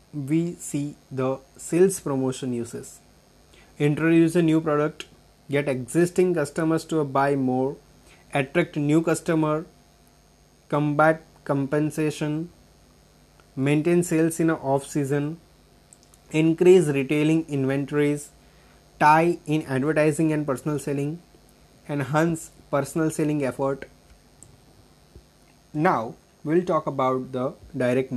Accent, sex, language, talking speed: native, male, Gujarati, 100 wpm